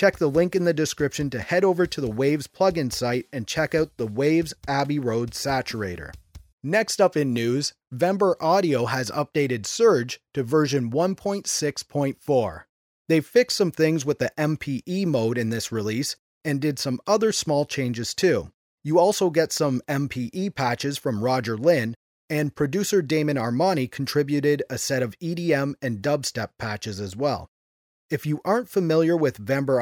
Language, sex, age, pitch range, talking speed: English, male, 30-49, 125-170 Hz, 165 wpm